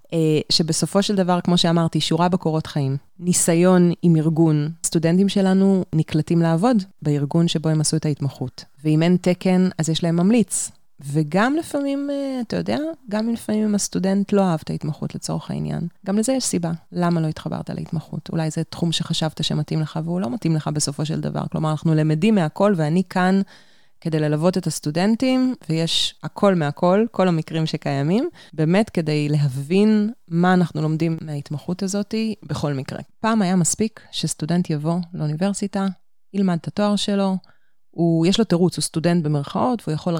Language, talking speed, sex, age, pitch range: Hebrew, 160 wpm, female, 30-49, 155-195 Hz